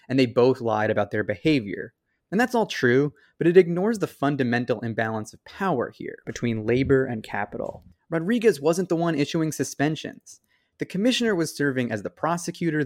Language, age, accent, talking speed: English, 20-39, American, 175 wpm